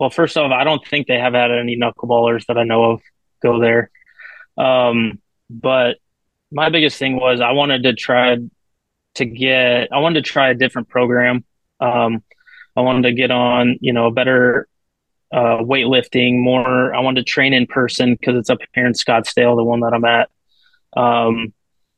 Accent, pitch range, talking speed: American, 120-130 Hz, 190 wpm